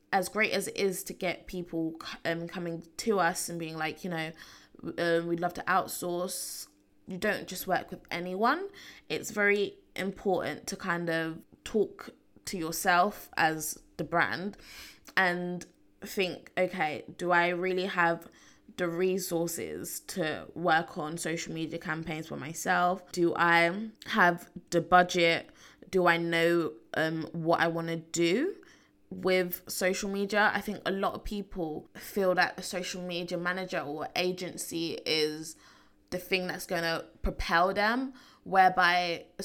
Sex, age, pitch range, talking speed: female, 20-39, 165-190 Hz, 150 wpm